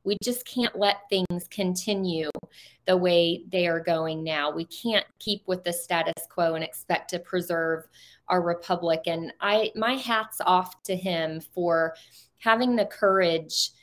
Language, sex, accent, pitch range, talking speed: English, female, American, 180-210 Hz, 155 wpm